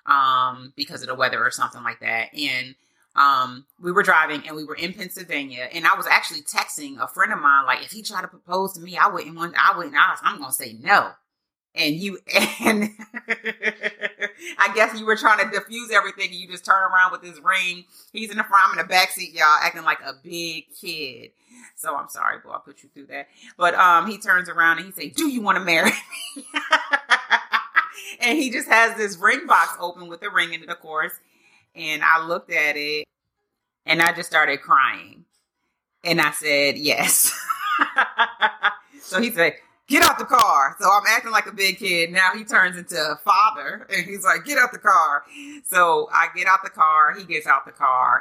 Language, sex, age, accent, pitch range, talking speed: English, female, 30-49, American, 155-210 Hz, 210 wpm